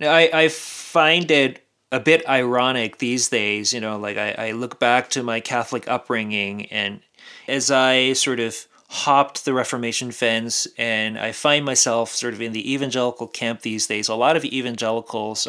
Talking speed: 175 wpm